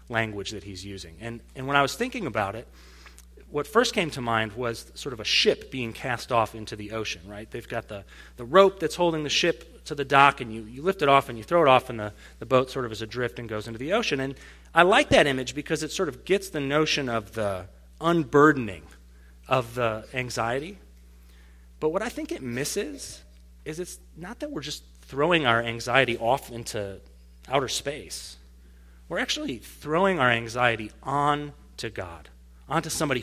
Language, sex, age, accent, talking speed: English, male, 30-49, American, 200 wpm